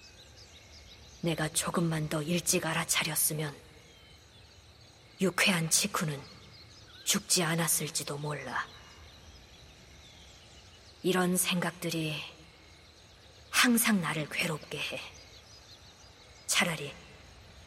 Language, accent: Korean, native